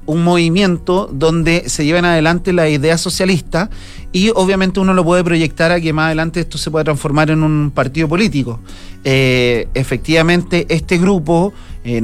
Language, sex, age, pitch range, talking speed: Spanish, male, 40-59, 140-175 Hz, 160 wpm